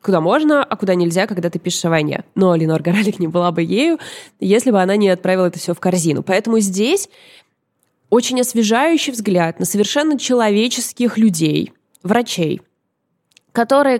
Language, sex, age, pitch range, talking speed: Russian, female, 20-39, 185-265 Hz, 160 wpm